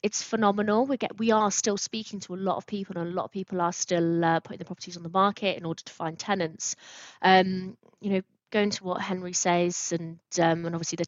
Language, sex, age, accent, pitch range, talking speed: English, female, 20-39, British, 170-195 Hz, 245 wpm